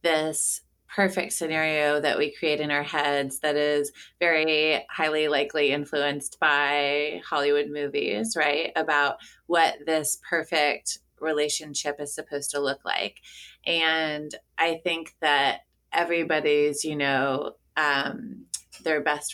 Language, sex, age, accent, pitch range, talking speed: English, female, 20-39, American, 145-160 Hz, 120 wpm